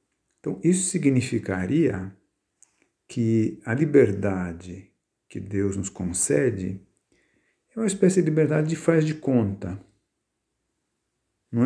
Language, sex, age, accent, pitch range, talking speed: Portuguese, male, 50-69, Brazilian, 100-145 Hz, 105 wpm